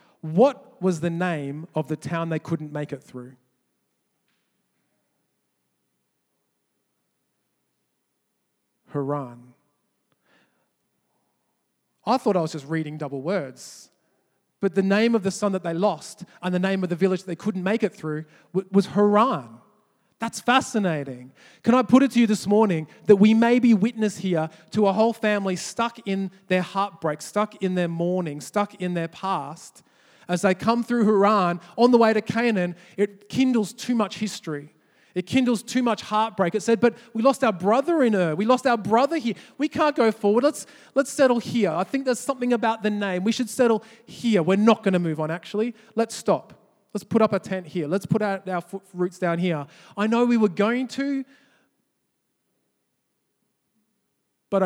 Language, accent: English, Australian